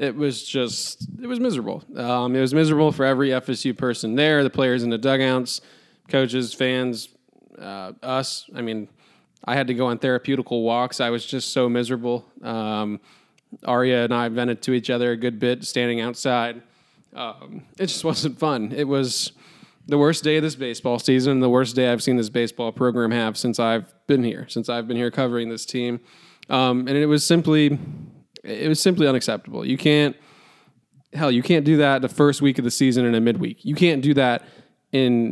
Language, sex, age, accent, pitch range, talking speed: English, male, 20-39, American, 120-140 Hz, 195 wpm